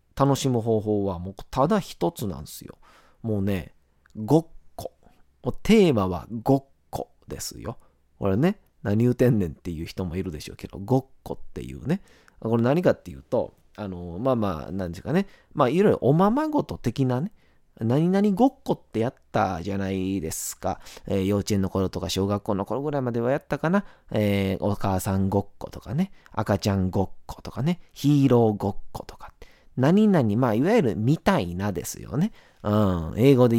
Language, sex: Japanese, male